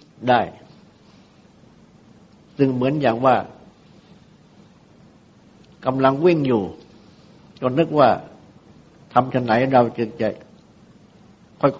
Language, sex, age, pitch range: Thai, male, 60-79, 115-135 Hz